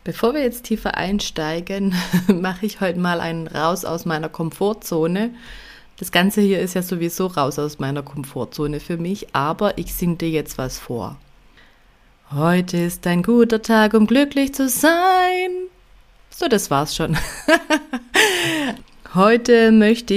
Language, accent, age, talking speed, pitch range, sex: German, German, 30-49, 145 wpm, 160-205 Hz, female